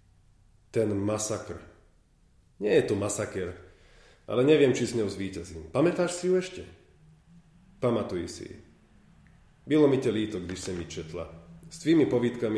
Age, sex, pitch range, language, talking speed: 40-59, male, 95-125 Hz, Czech, 140 wpm